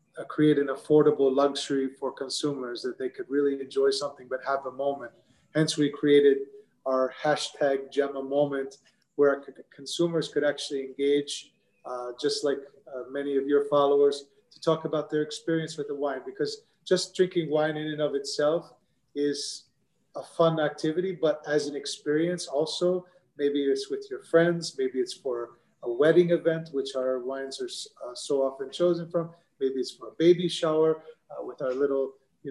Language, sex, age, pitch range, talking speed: English, male, 30-49, 140-160 Hz, 170 wpm